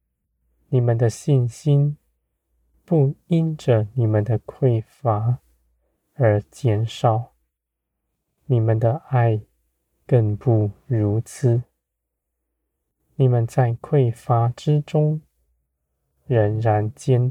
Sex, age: male, 20-39